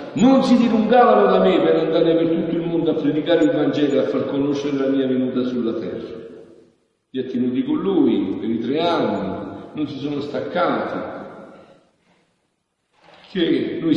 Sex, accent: male, native